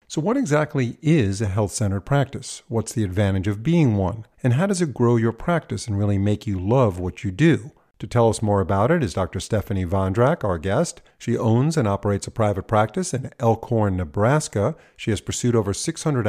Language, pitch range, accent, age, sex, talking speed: English, 100-130 Hz, American, 50-69, male, 205 wpm